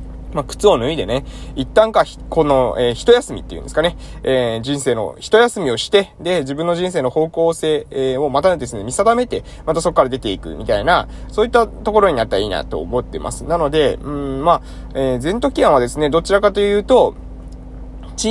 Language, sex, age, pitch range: Japanese, male, 20-39, 130-205 Hz